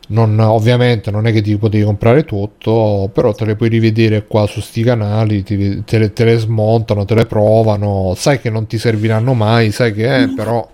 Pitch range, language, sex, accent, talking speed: 110-125 Hz, Italian, male, native, 210 wpm